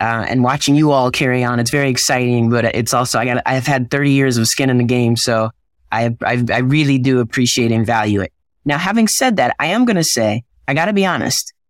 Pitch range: 120-145 Hz